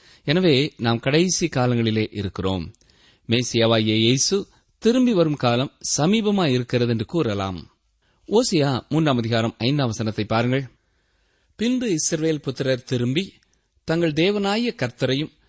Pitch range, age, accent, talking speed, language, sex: 115-175 Hz, 30-49, native, 100 wpm, Tamil, male